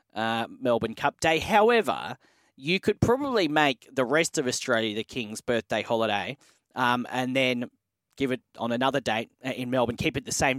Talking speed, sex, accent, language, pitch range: 175 wpm, male, Australian, English, 125-165 Hz